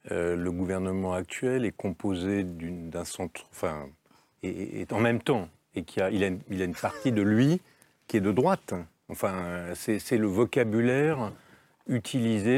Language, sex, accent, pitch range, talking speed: French, male, French, 95-120 Hz, 175 wpm